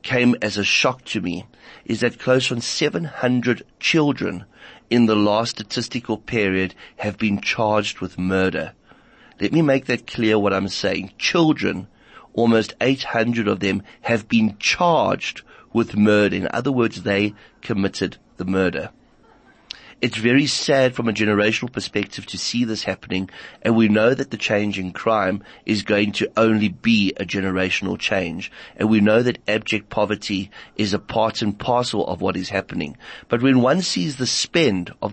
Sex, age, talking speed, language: male, 30-49, 165 wpm, English